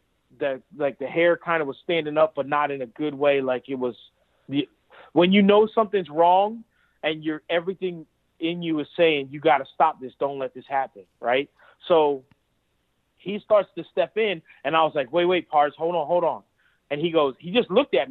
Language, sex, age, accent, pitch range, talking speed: English, male, 30-49, American, 145-215 Hz, 210 wpm